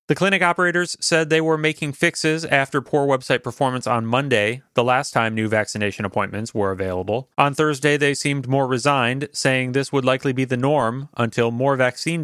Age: 30-49